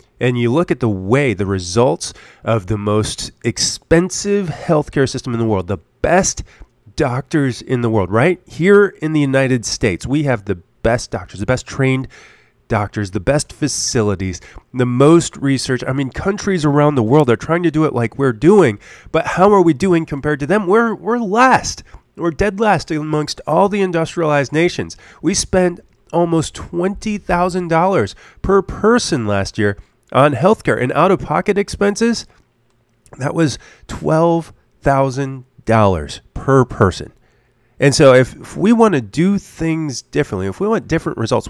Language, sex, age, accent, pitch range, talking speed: English, male, 30-49, American, 115-165 Hz, 160 wpm